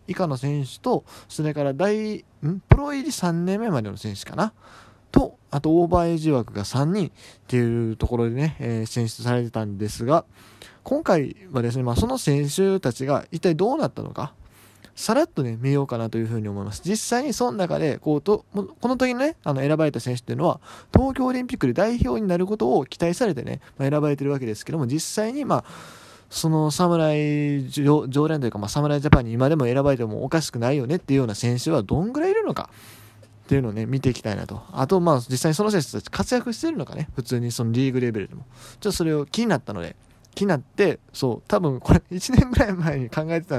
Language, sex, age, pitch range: Japanese, male, 20-39, 120-170 Hz